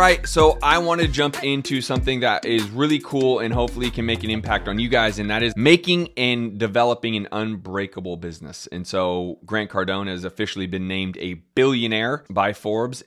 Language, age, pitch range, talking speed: English, 30-49, 95-120 Hz, 195 wpm